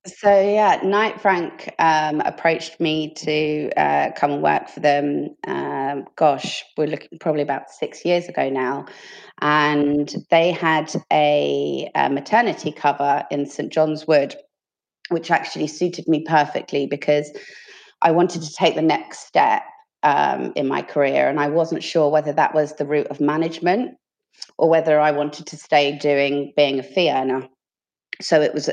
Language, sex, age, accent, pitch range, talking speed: English, female, 30-49, British, 145-165 Hz, 160 wpm